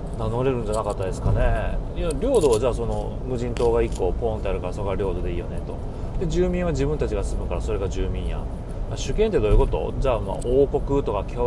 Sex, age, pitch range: male, 30-49, 90-115 Hz